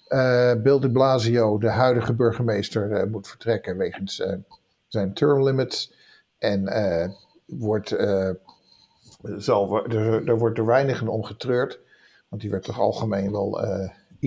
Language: English